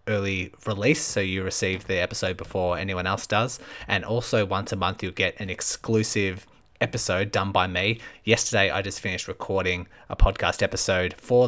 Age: 20-39